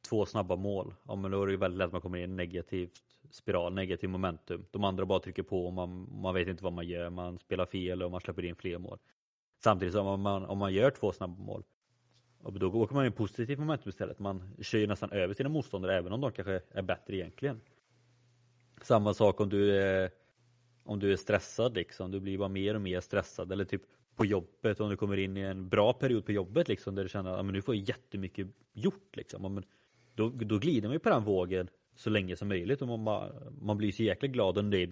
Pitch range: 95-115 Hz